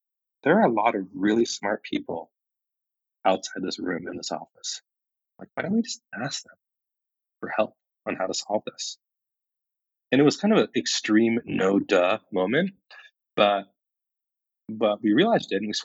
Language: English